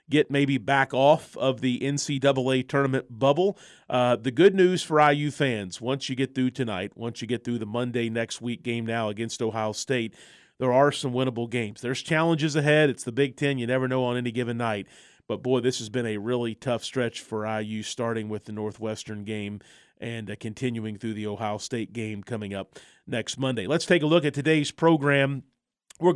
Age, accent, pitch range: 40-59, American, 115-140 Hz